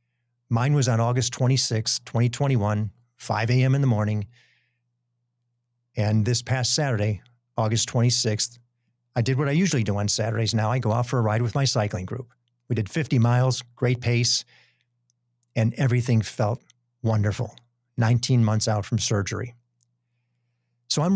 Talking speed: 150 wpm